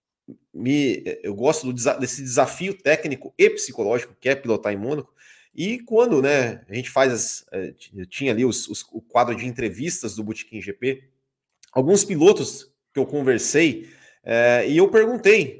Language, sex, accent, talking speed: Portuguese, male, Brazilian, 135 wpm